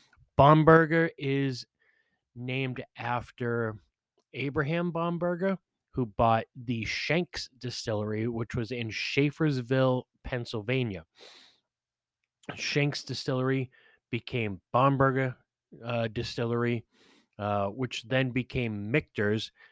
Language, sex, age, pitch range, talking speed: English, male, 30-49, 105-135 Hz, 80 wpm